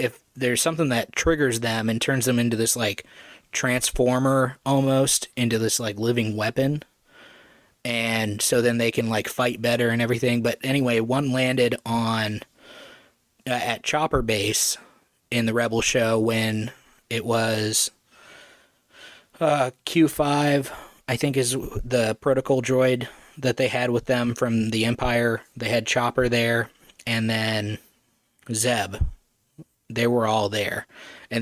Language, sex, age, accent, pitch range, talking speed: English, male, 20-39, American, 110-125 Hz, 140 wpm